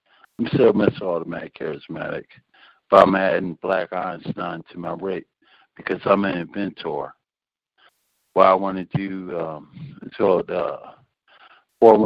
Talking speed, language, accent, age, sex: 120 wpm, English, American, 60-79, male